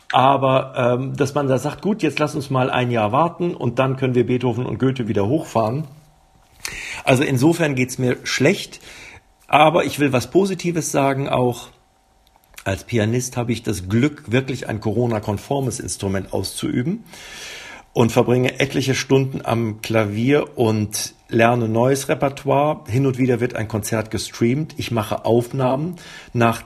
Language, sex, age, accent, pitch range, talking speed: German, male, 50-69, German, 110-135 Hz, 150 wpm